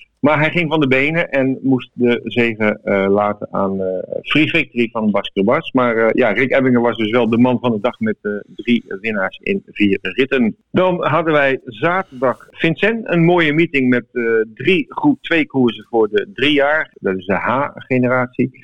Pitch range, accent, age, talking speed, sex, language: 120-150 Hz, Dutch, 50-69, 195 wpm, male, Dutch